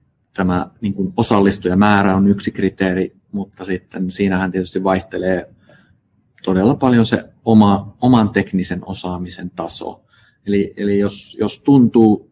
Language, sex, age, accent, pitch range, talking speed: Finnish, male, 30-49, native, 95-105 Hz, 105 wpm